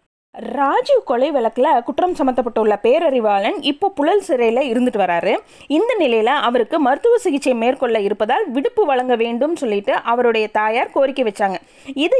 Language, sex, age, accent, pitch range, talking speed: Tamil, female, 20-39, native, 235-315 Hz, 135 wpm